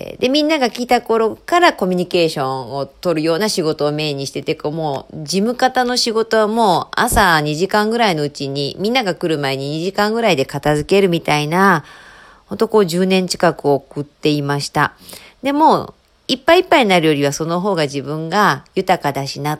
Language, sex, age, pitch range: Japanese, female, 40-59, 150-225 Hz